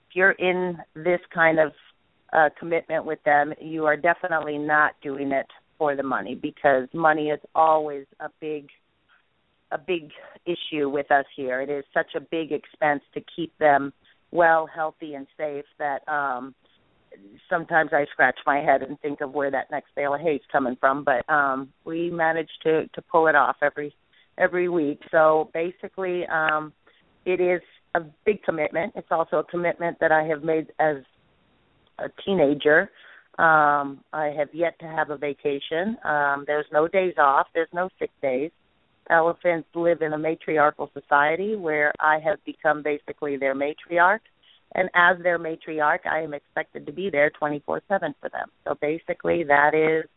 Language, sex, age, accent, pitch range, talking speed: English, female, 40-59, American, 145-165 Hz, 170 wpm